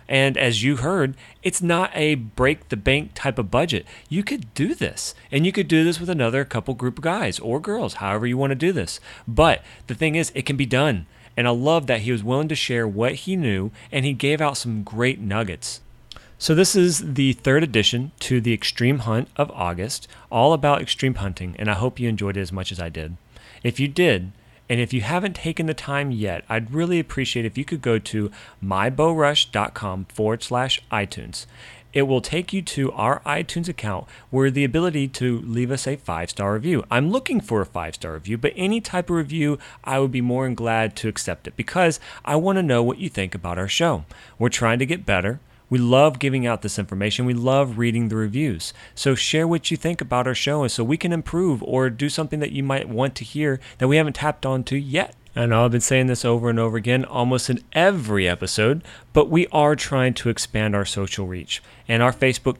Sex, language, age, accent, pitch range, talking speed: male, English, 40-59, American, 115-150 Hz, 220 wpm